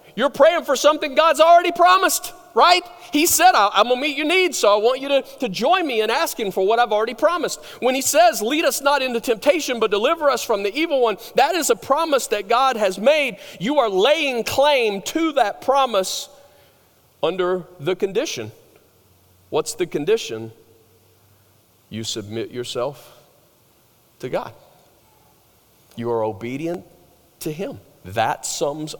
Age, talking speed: 40-59, 160 wpm